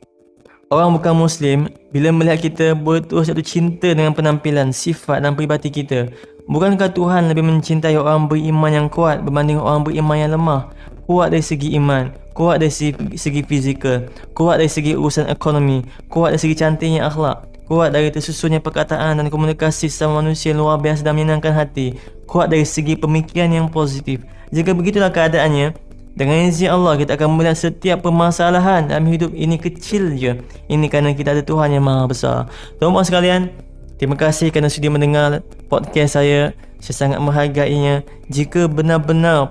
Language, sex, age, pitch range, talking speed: Malay, male, 20-39, 145-160 Hz, 160 wpm